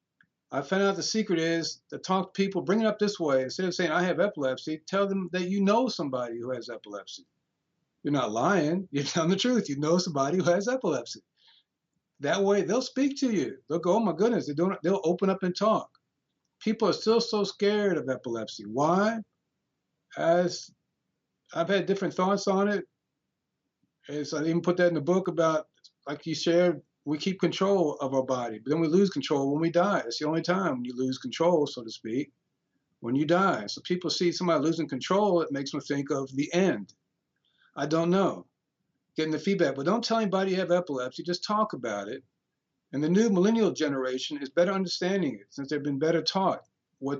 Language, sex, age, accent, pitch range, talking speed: English, male, 50-69, American, 145-190 Hz, 200 wpm